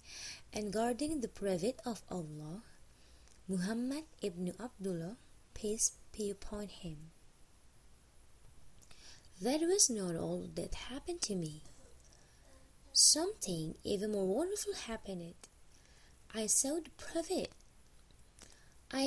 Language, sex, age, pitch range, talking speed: English, female, 20-39, 180-260 Hz, 100 wpm